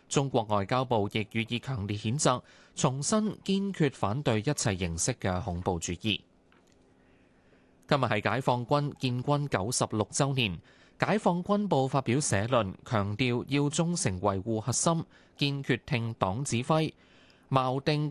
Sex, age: male, 20-39